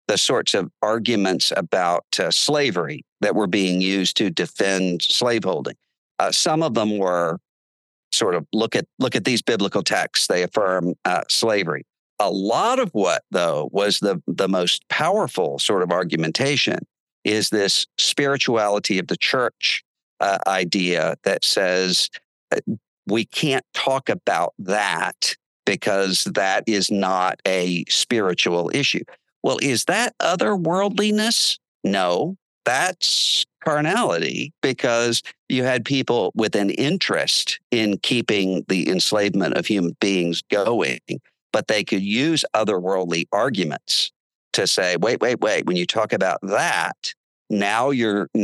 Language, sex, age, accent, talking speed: English, male, 50-69, American, 135 wpm